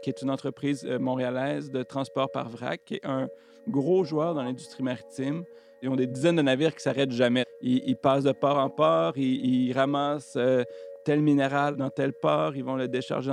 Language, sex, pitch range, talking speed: French, male, 130-155 Hz, 210 wpm